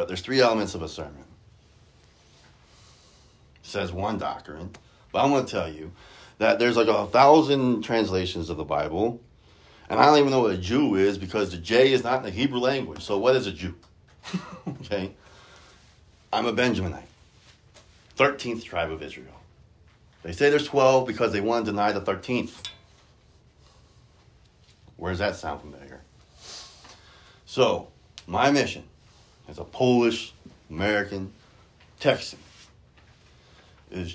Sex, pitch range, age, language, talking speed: male, 100-130 Hz, 30-49, English, 140 wpm